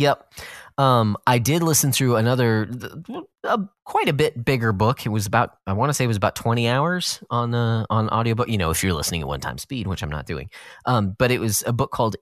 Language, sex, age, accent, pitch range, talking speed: English, male, 30-49, American, 100-135 Hz, 245 wpm